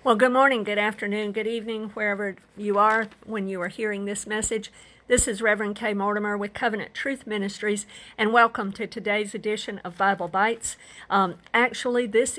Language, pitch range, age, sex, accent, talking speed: English, 195-230 Hz, 50-69, female, American, 175 wpm